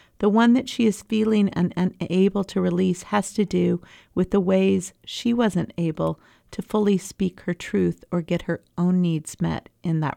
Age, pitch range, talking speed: 40-59, 160-200 Hz, 190 wpm